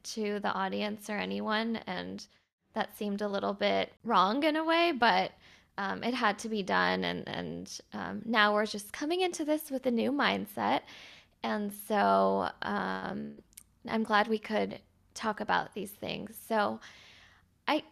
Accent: American